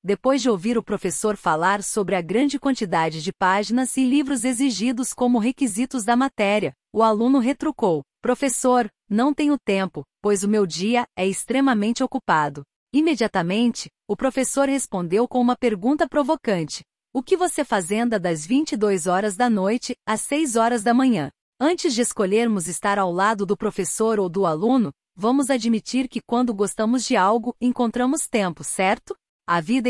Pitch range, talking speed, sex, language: 200-255 Hz, 155 wpm, female, Portuguese